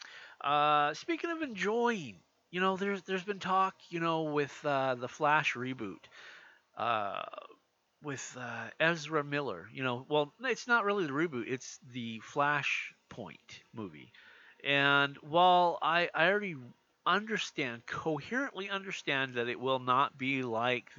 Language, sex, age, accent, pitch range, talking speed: English, male, 40-59, American, 130-180 Hz, 135 wpm